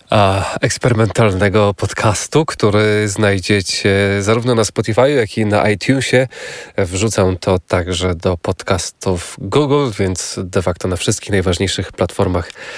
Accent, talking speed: native, 115 wpm